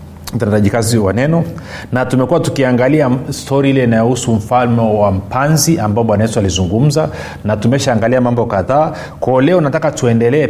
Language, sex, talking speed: Swahili, male, 145 wpm